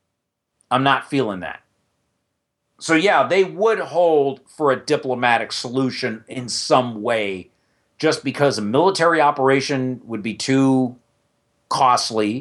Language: English